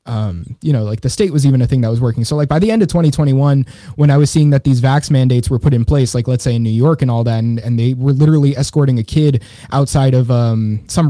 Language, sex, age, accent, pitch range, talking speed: English, male, 20-39, American, 125-150 Hz, 285 wpm